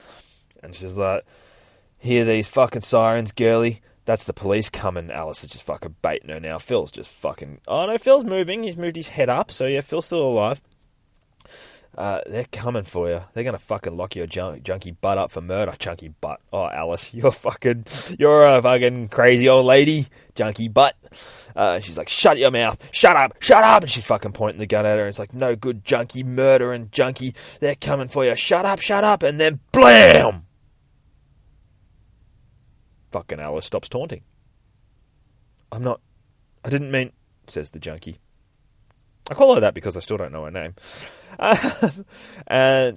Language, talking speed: English, 180 wpm